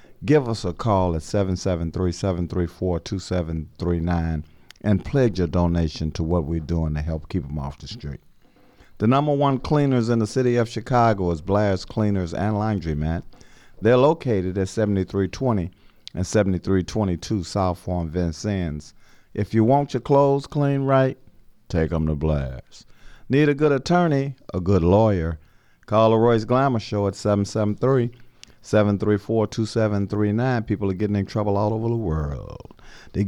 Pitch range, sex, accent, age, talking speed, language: 90-115 Hz, male, American, 50-69, 155 wpm, English